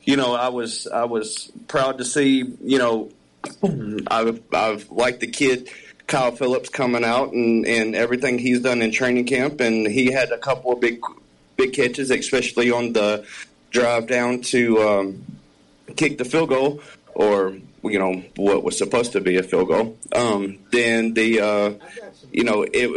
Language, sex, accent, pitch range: English, male, American, 105-130 Hz